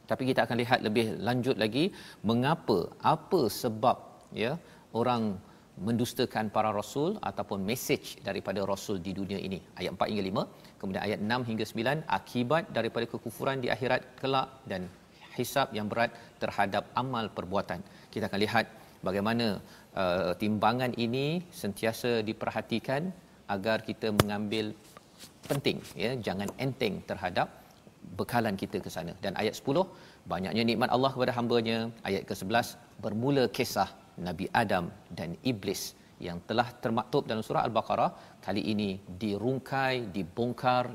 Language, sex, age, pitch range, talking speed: Malayalam, male, 40-59, 105-125 Hz, 135 wpm